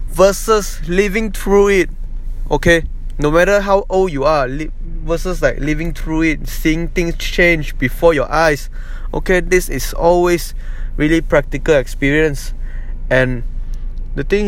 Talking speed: 135 wpm